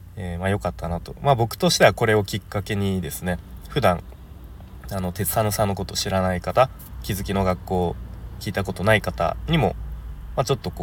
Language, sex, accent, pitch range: Japanese, male, native, 85-115 Hz